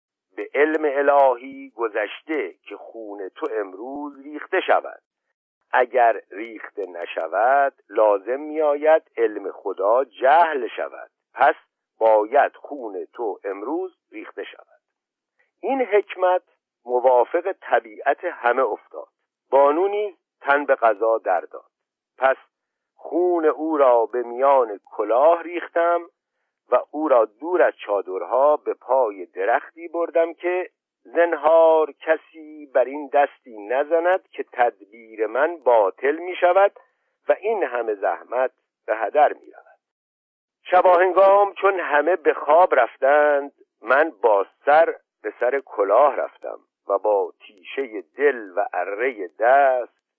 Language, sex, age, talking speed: Persian, male, 50-69, 115 wpm